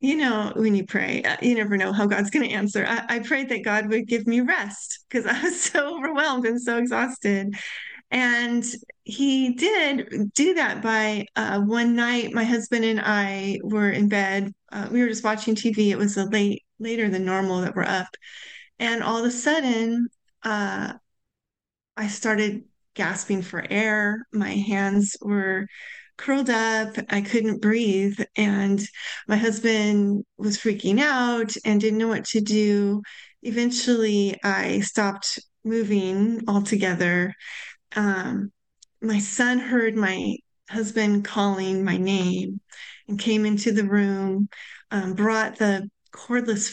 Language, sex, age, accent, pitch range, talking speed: English, female, 30-49, American, 200-235 Hz, 145 wpm